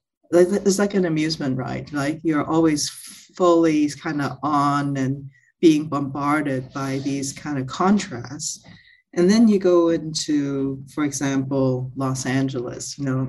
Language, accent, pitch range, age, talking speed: English, American, 135-155 Hz, 40-59, 140 wpm